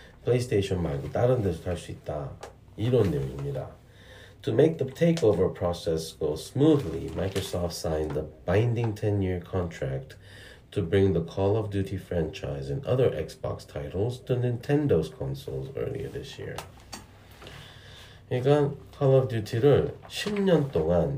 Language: Korean